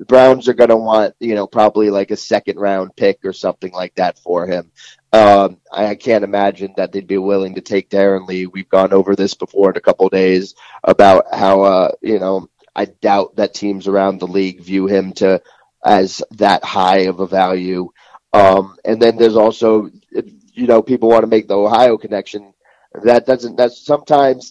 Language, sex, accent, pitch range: English, male, American, 95-115 Hz